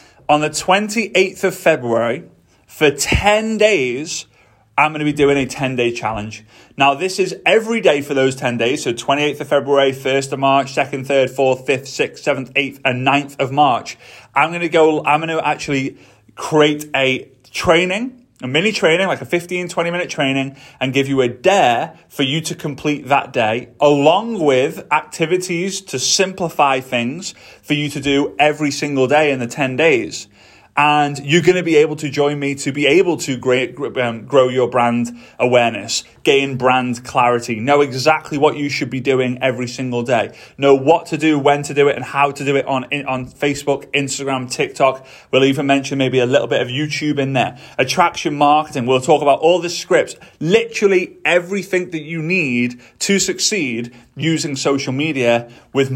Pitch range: 130-155 Hz